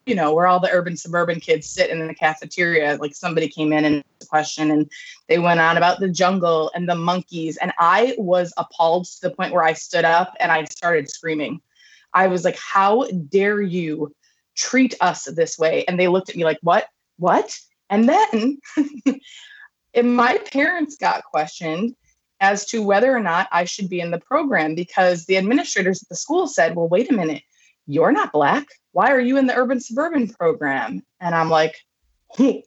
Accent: American